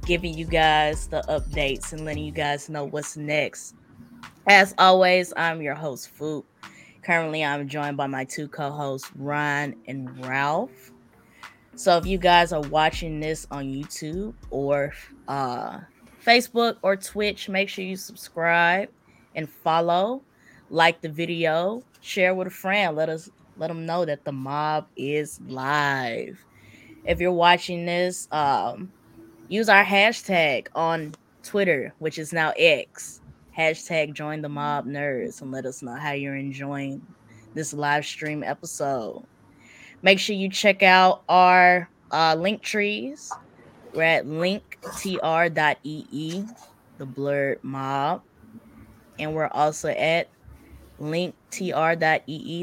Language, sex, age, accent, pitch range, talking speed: English, female, 20-39, American, 145-180 Hz, 130 wpm